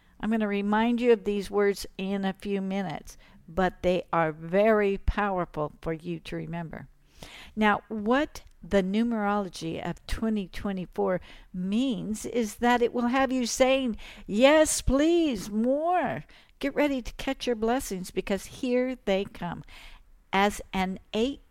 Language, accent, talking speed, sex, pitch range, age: English, American, 140 wpm, female, 185-240 Hz, 60-79